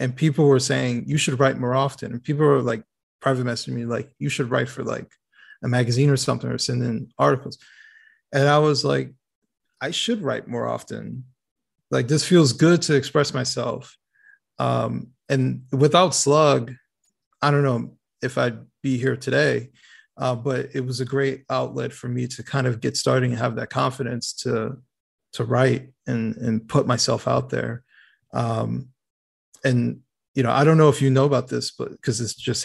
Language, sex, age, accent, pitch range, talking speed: English, male, 30-49, American, 115-140 Hz, 185 wpm